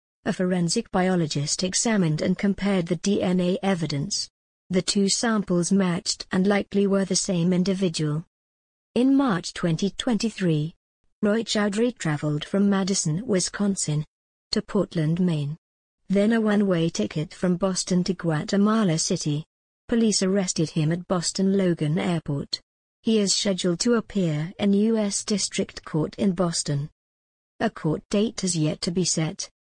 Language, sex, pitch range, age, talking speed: English, female, 165-200 Hz, 50-69, 135 wpm